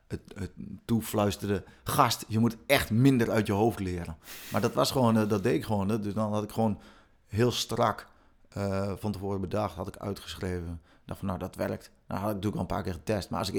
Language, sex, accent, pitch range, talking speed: Dutch, male, Dutch, 95-110 Hz, 225 wpm